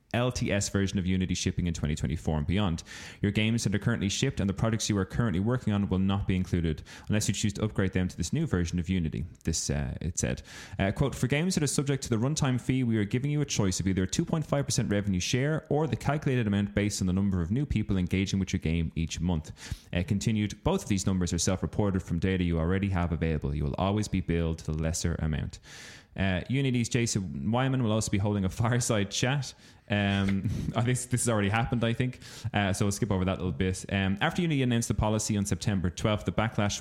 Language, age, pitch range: English, 20-39, 90-115 Hz